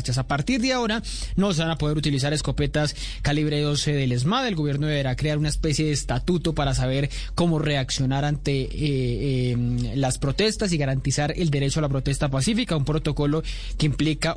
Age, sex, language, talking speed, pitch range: 20-39, male, Spanish, 185 wpm, 140-175 Hz